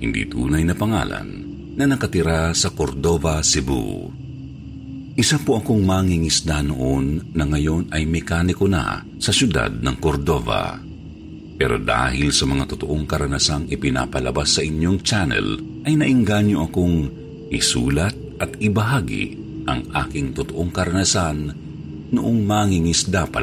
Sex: male